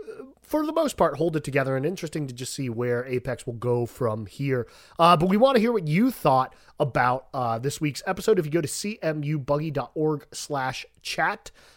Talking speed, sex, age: 195 wpm, male, 30-49